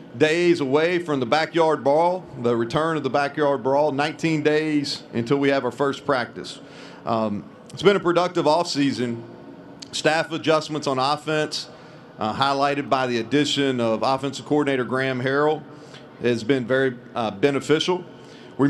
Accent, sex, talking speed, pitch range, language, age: American, male, 150 wpm, 135-160 Hz, English, 40-59